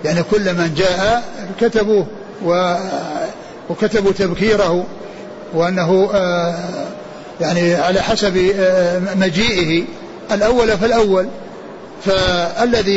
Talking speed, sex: 70 wpm, male